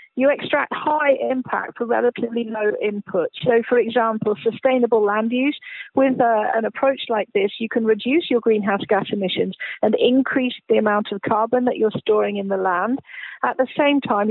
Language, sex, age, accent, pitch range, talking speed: English, female, 40-59, British, 215-280 Hz, 180 wpm